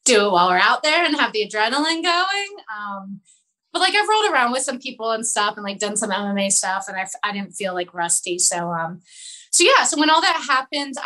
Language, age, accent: English, 20-39, American